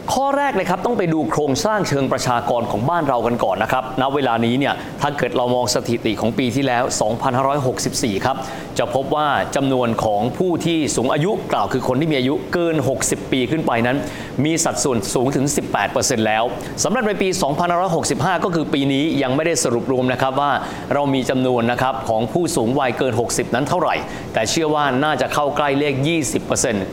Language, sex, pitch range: Thai, male, 130-165 Hz